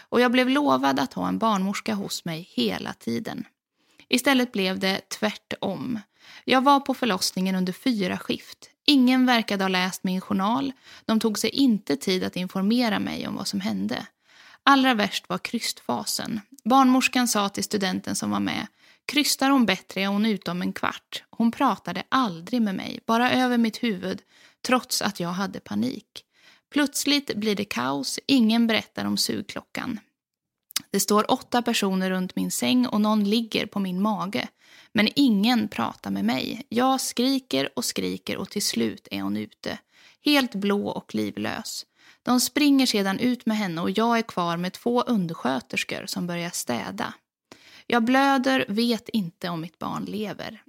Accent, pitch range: Swedish, 190-255 Hz